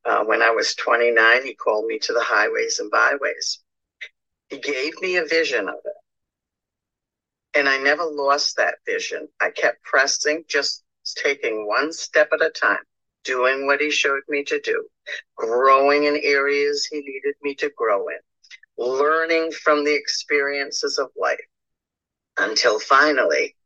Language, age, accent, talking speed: English, 50-69, American, 150 wpm